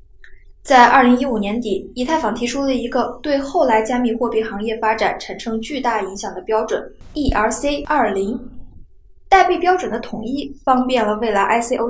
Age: 10-29